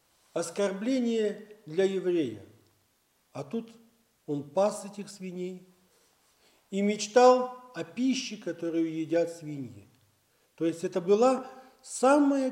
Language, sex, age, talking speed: Russian, male, 50-69, 100 wpm